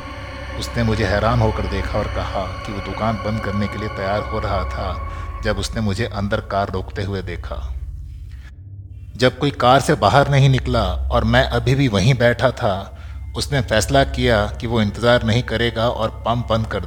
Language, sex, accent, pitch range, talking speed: Hindi, male, native, 90-115 Hz, 185 wpm